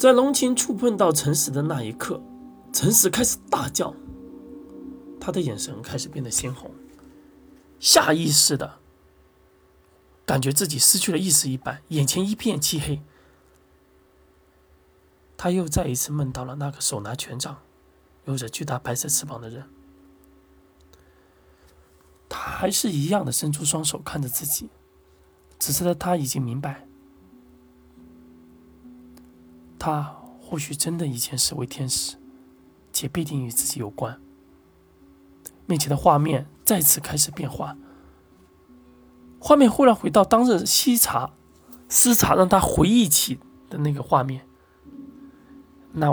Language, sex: Chinese, male